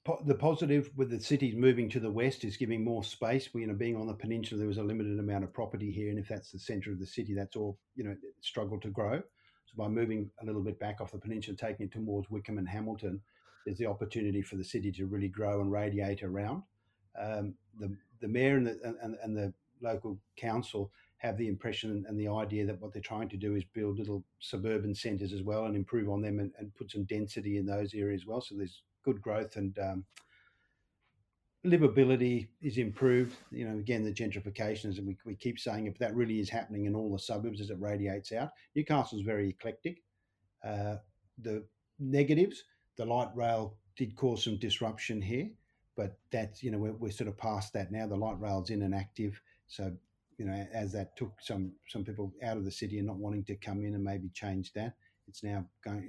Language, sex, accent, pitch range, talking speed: English, male, Australian, 100-115 Hz, 220 wpm